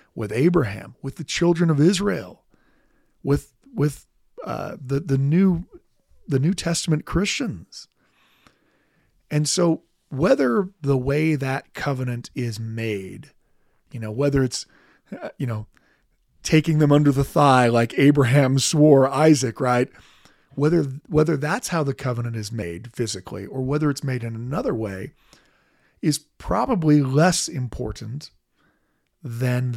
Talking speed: 125 wpm